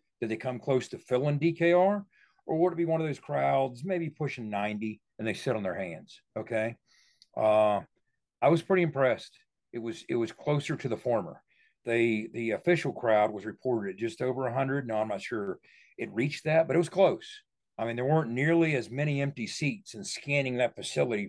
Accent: American